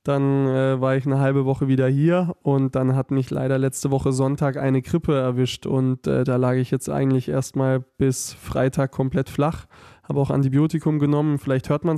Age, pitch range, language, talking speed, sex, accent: 20-39, 130-145 Hz, German, 195 wpm, male, German